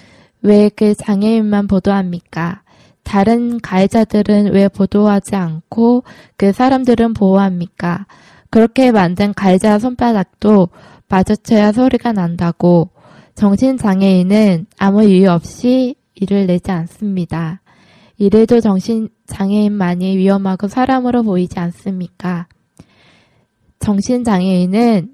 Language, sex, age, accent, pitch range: Korean, female, 20-39, native, 185-230 Hz